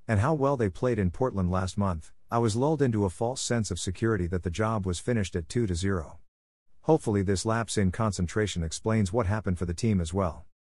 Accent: American